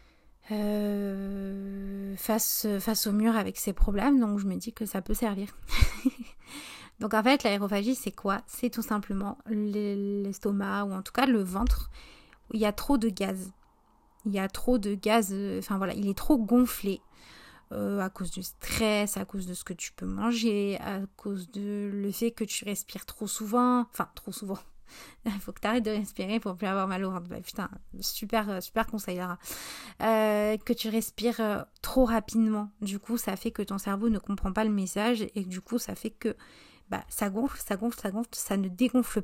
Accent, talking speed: French, 195 wpm